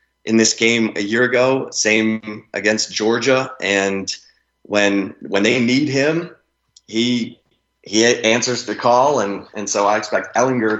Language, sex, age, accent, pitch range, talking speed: English, male, 30-49, American, 100-115 Hz, 145 wpm